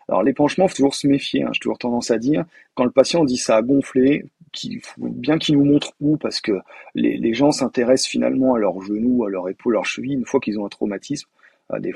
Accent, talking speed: French, 245 wpm